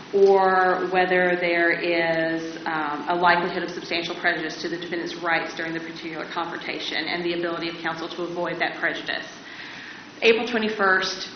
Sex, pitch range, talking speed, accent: female, 170-220 Hz, 155 wpm, American